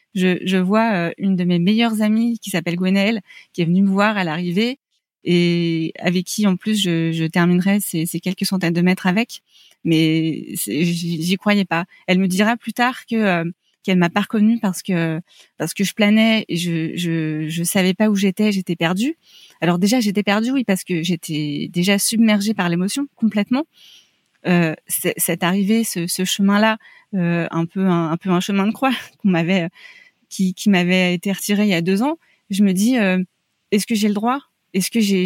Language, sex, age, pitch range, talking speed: French, female, 30-49, 175-215 Hz, 210 wpm